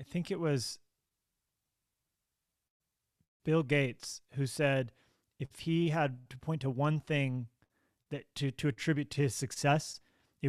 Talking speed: 135 wpm